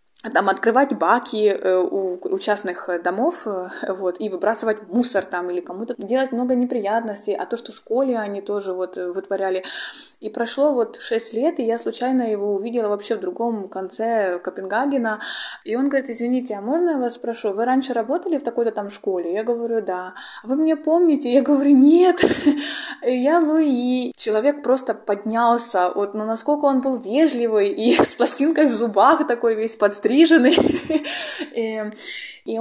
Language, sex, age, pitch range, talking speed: Russian, female, 20-39, 205-270 Hz, 165 wpm